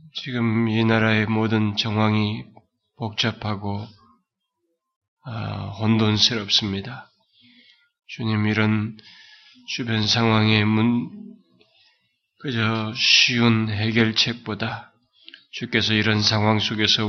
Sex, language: male, Korean